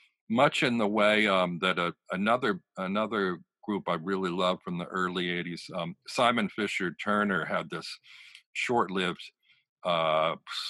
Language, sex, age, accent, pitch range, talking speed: English, male, 50-69, American, 95-110 Hz, 140 wpm